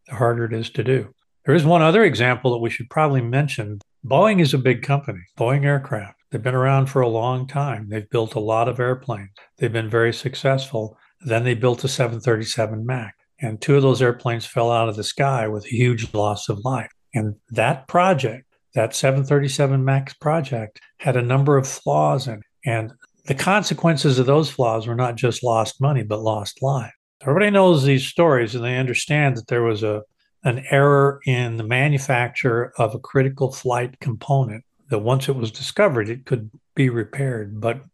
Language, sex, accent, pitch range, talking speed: English, male, American, 115-140 Hz, 190 wpm